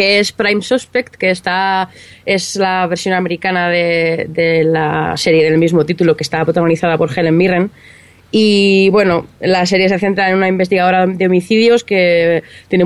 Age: 20-39